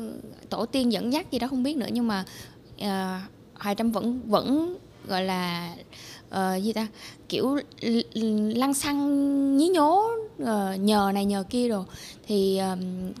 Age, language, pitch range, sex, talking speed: 10-29, Vietnamese, 195-275 Hz, female, 155 wpm